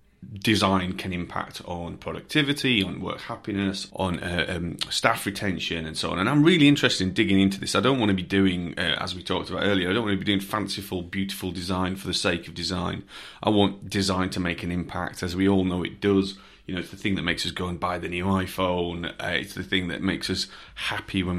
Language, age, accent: English, 30-49, British